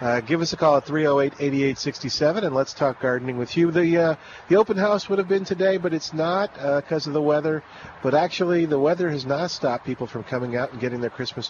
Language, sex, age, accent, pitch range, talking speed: English, male, 40-59, American, 135-165 Hz, 235 wpm